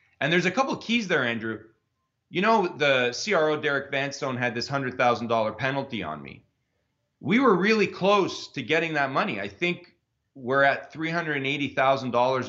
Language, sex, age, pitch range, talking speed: English, male, 40-59, 115-165 Hz, 160 wpm